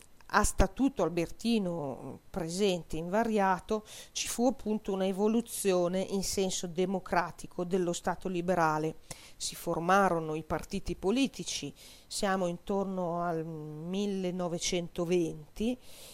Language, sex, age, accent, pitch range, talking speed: Italian, female, 40-59, native, 165-200 Hz, 90 wpm